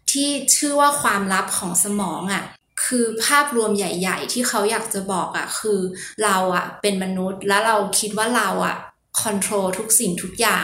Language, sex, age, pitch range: Thai, female, 20-39, 195-235 Hz